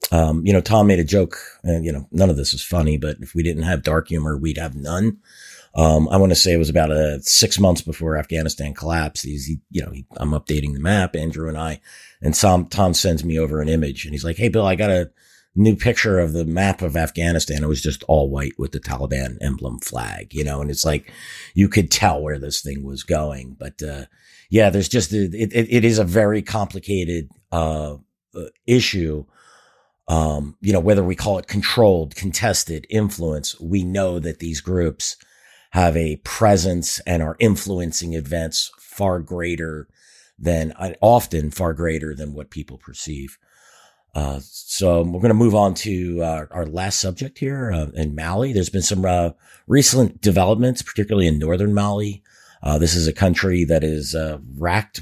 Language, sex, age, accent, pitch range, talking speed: English, male, 50-69, American, 75-95 Hz, 195 wpm